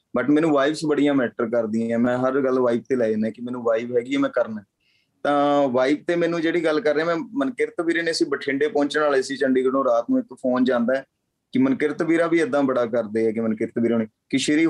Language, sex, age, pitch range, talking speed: Punjabi, male, 30-49, 120-145 Hz, 225 wpm